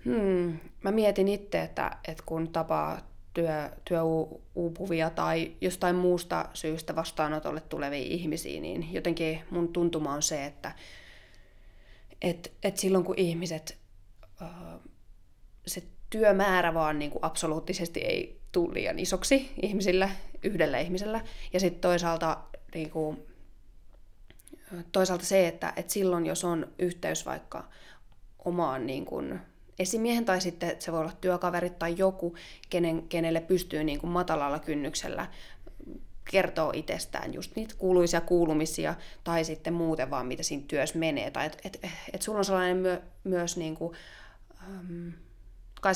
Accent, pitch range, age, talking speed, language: native, 155-185 Hz, 20-39, 120 wpm, Finnish